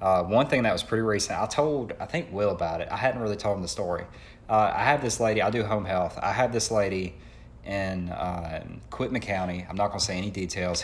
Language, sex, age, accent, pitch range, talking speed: English, male, 20-39, American, 90-110 Hz, 250 wpm